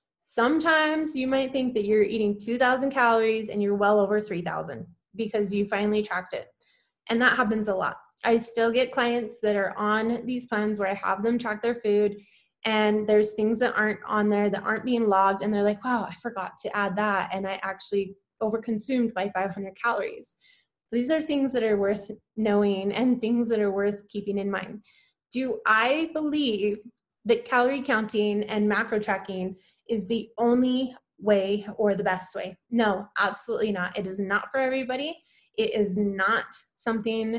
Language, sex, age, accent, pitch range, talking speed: English, female, 20-39, American, 205-235 Hz, 180 wpm